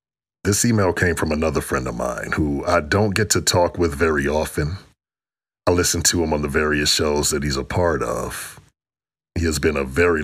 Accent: American